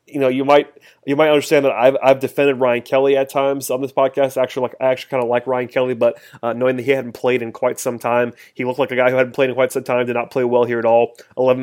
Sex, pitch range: male, 120-135 Hz